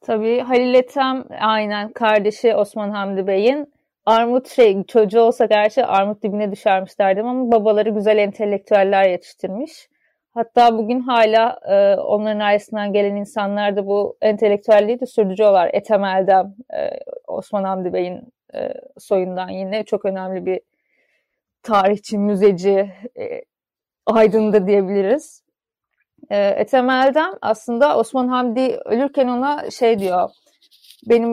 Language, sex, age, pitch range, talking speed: Turkish, female, 30-49, 200-240 Hz, 120 wpm